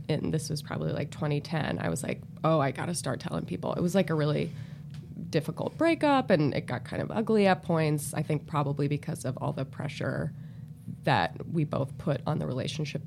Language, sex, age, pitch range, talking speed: English, female, 20-39, 145-170 Hz, 210 wpm